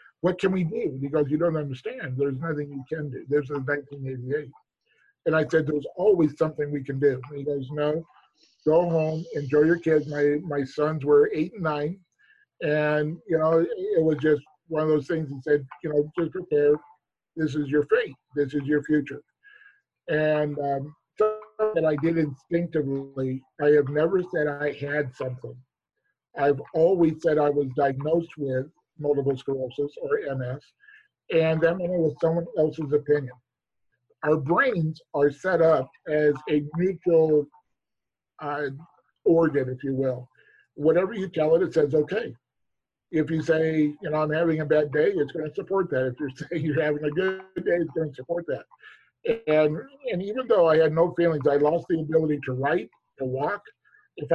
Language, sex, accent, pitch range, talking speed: English, male, American, 145-165 Hz, 180 wpm